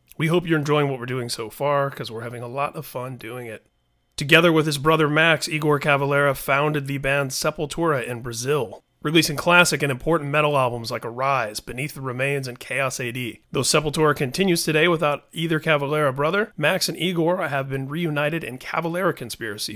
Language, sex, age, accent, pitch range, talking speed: English, male, 30-49, American, 125-155 Hz, 190 wpm